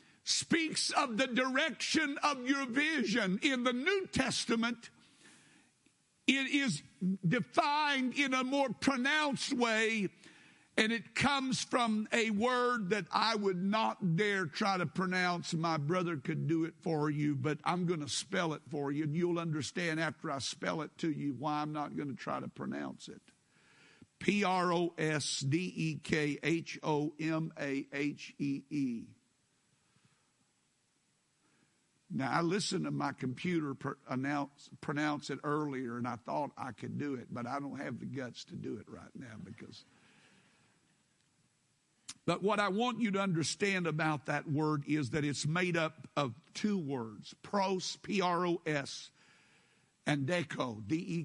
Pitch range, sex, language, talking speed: 150-220 Hz, male, English, 145 wpm